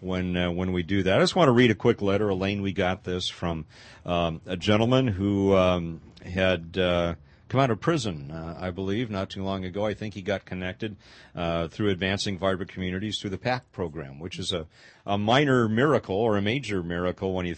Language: English